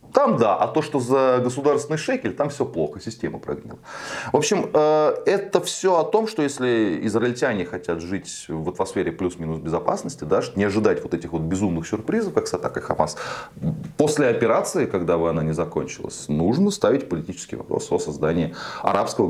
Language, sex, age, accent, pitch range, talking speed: Russian, male, 20-39, native, 85-130 Hz, 170 wpm